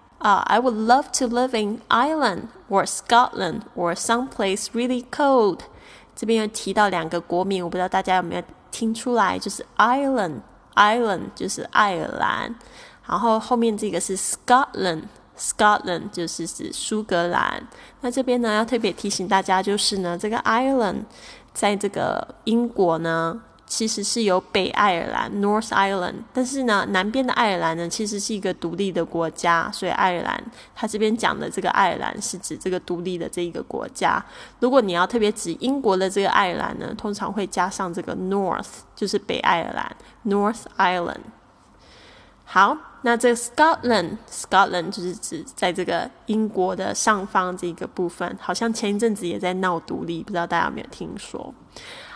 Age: 10-29